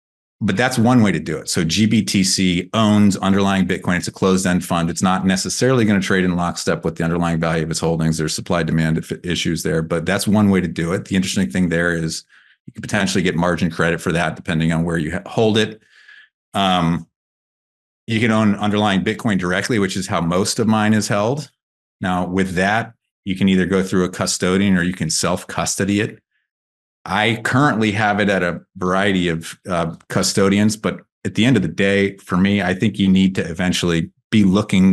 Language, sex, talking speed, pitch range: English, male, 205 wpm, 85-105 Hz